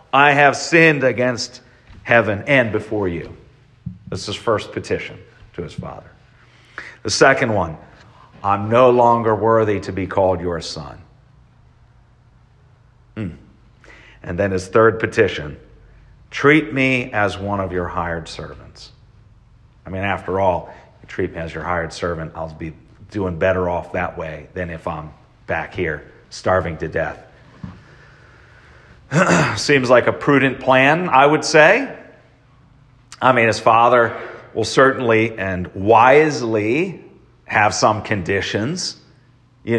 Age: 40-59